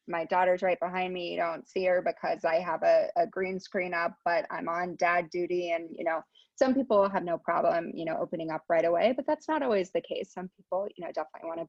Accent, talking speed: American, 250 wpm